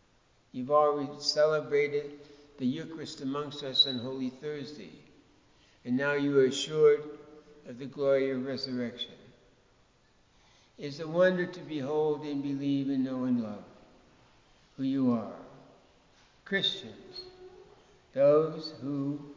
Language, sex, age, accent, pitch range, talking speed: English, male, 60-79, American, 135-155 Hz, 120 wpm